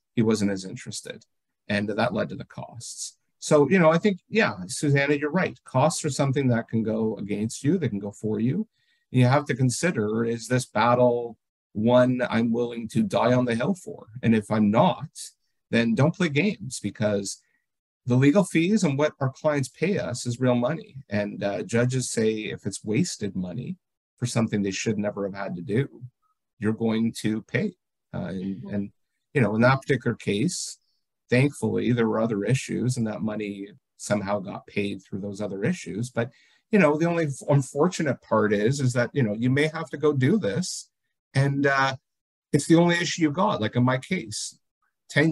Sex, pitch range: male, 110-150 Hz